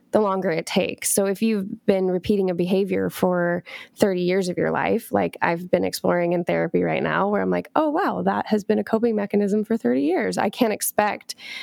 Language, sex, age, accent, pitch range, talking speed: English, female, 20-39, American, 185-225 Hz, 210 wpm